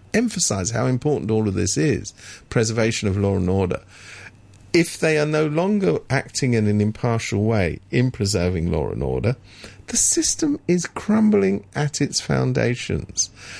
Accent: British